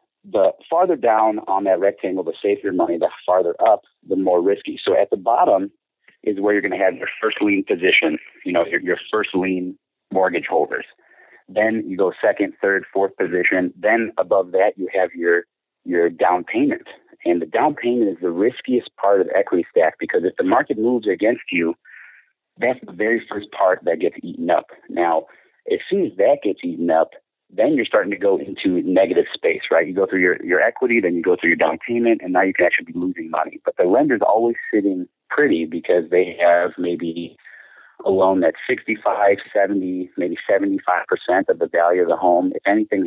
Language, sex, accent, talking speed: English, male, American, 200 wpm